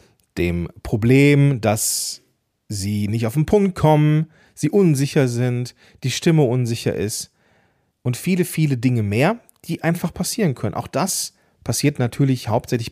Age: 40-59